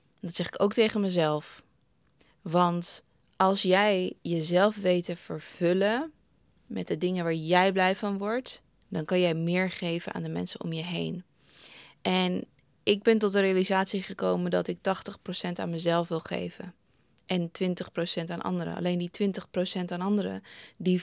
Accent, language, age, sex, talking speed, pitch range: Dutch, Dutch, 20-39, female, 160 wpm, 175-200 Hz